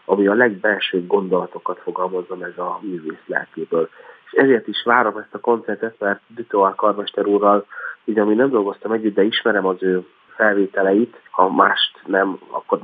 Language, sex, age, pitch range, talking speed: Hungarian, male, 30-49, 95-110 Hz, 160 wpm